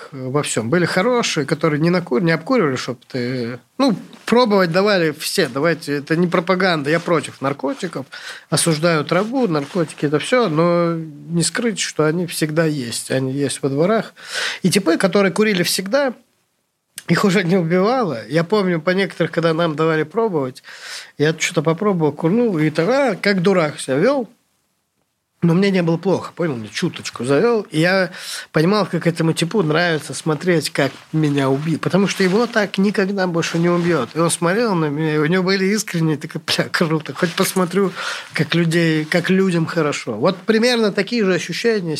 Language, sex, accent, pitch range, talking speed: Russian, male, native, 155-200 Hz, 165 wpm